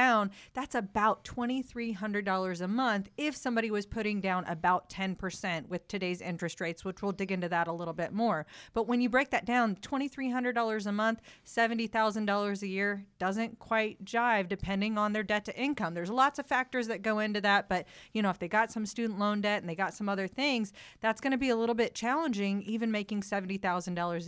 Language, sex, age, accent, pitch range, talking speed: English, female, 30-49, American, 190-240 Hz, 200 wpm